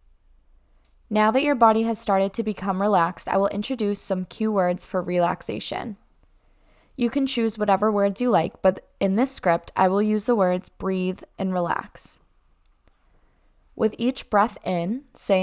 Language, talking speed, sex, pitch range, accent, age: English, 155 wpm, female, 180-215 Hz, American, 10-29